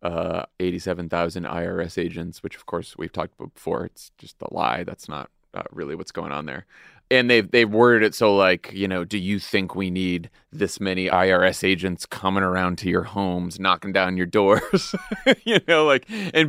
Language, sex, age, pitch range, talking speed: English, male, 30-49, 95-155 Hz, 195 wpm